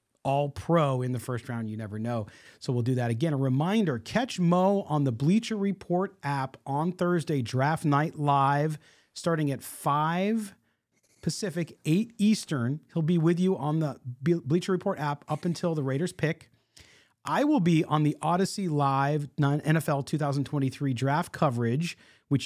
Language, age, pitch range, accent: English, 40-59, 125-170 Hz, American